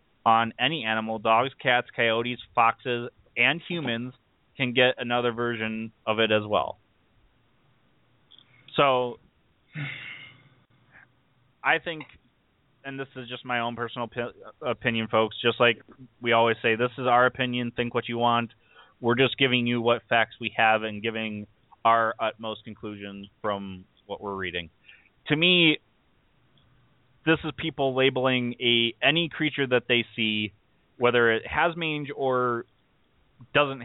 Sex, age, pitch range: male, 20-39, 110-130 Hz